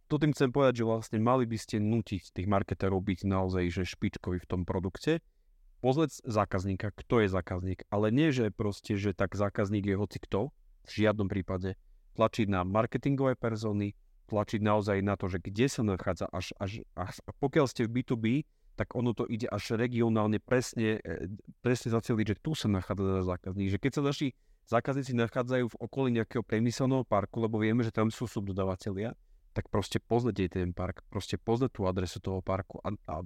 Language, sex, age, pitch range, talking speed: Slovak, male, 30-49, 95-120 Hz, 180 wpm